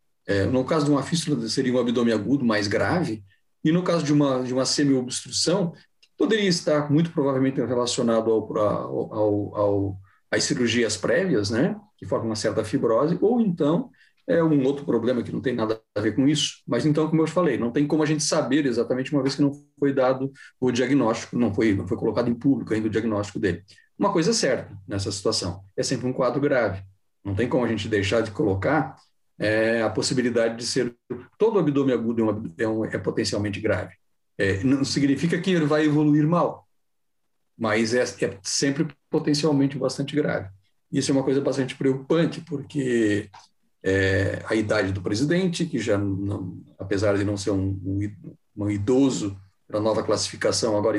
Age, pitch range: 40-59, 105-145 Hz